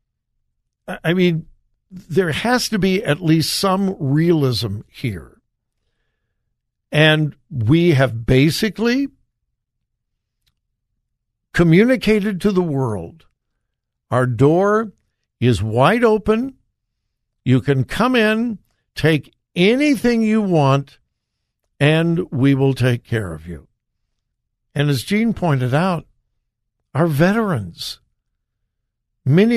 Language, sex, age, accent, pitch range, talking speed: English, male, 60-79, American, 115-175 Hz, 95 wpm